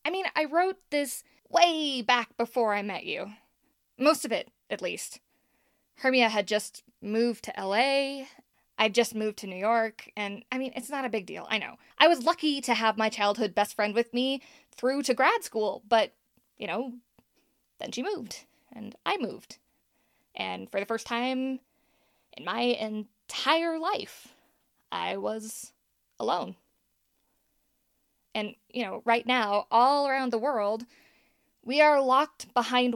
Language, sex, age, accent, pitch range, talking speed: English, female, 20-39, American, 205-255 Hz, 160 wpm